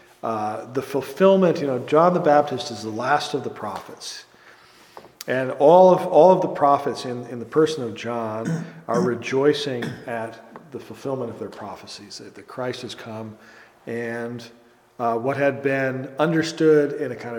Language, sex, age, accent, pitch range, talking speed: English, male, 40-59, American, 115-145 Hz, 165 wpm